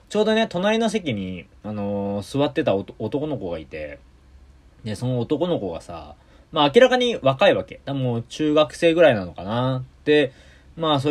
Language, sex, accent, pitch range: Japanese, male, native, 80-130 Hz